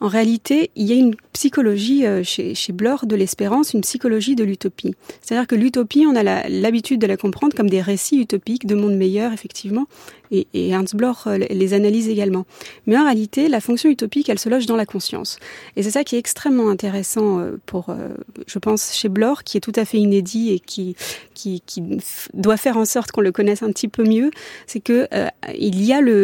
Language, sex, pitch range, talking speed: French, female, 205-260 Hz, 205 wpm